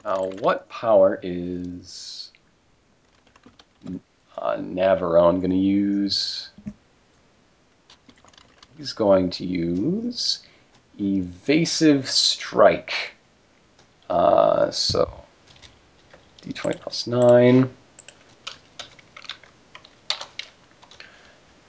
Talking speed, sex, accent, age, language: 55 wpm, male, American, 40-59, English